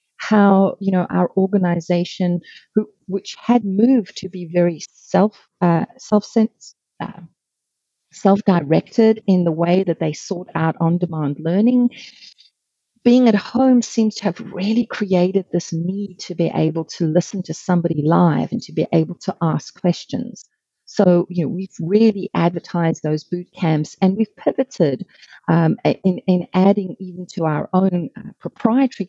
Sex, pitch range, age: female, 165-200 Hz, 40-59